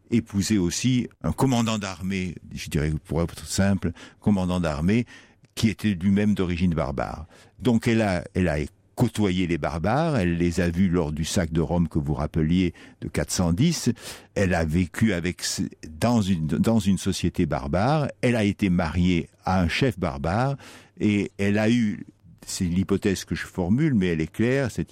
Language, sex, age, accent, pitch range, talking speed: French, male, 60-79, French, 85-110 Hz, 165 wpm